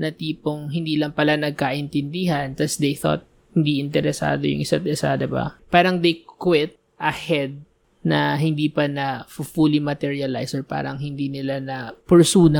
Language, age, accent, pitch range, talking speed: English, 20-39, Filipino, 145-200 Hz, 150 wpm